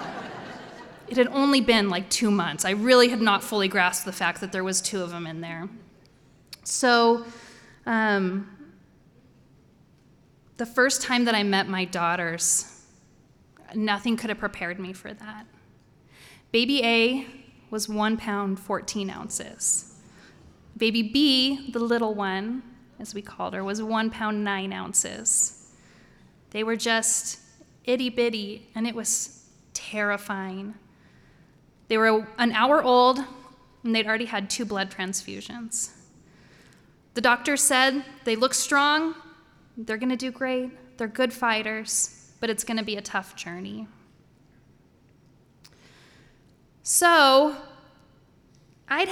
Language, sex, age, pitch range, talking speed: English, female, 20-39, 200-255 Hz, 130 wpm